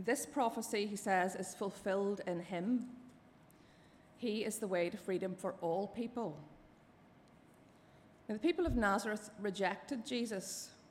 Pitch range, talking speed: 190-245 Hz, 130 wpm